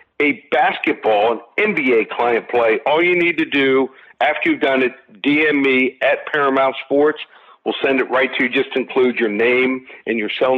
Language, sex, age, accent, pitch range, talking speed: English, male, 50-69, American, 120-145 Hz, 185 wpm